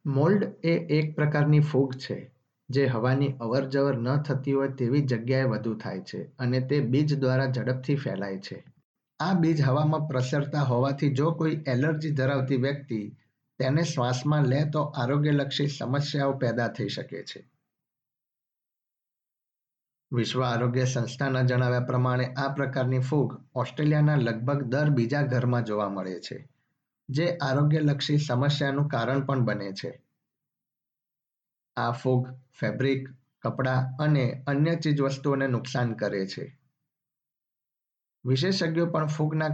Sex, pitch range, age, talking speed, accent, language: male, 125-145 Hz, 50-69, 80 wpm, native, Gujarati